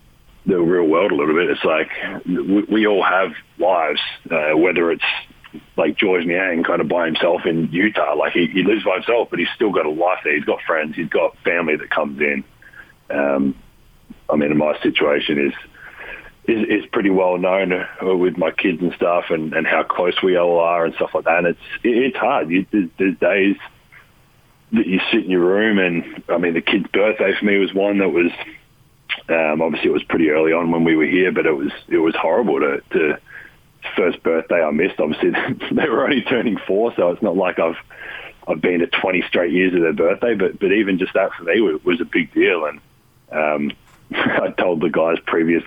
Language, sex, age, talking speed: English, male, 40-59, 210 wpm